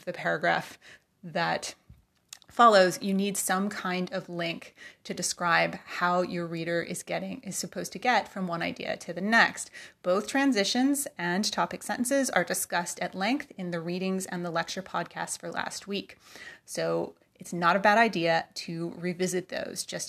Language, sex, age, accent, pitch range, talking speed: English, female, 30-49, American, 170-195 Hz, 165 wpm